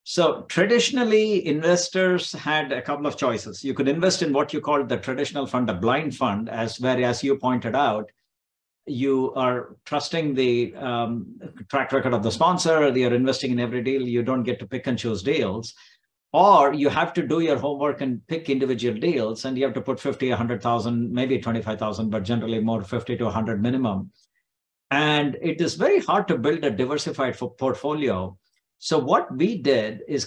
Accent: Indian